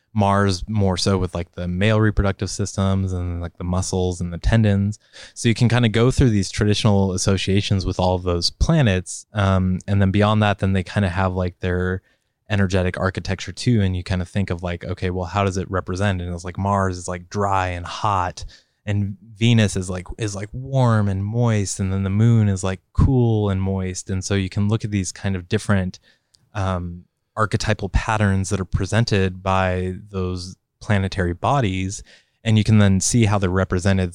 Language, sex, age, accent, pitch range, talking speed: English, male, 20-39, American, 90-105 Hz, 200 wpm